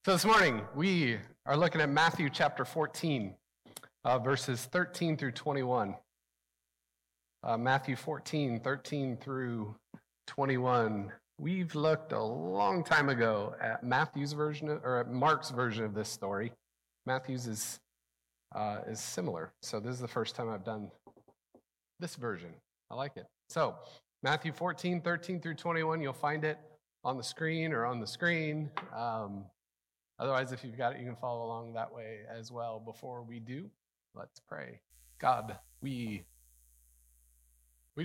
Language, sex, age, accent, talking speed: English, male, 40-59, American, 150 wpm